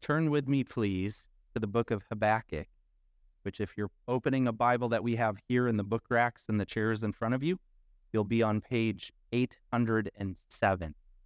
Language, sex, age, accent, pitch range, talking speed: English, male, 30-49, American, 95-125 Hz, 185 wpm